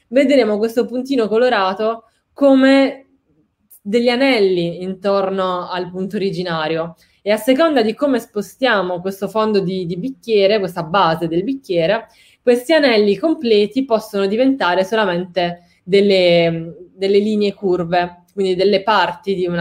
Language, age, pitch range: Italian, 20-39, 185-235 Hz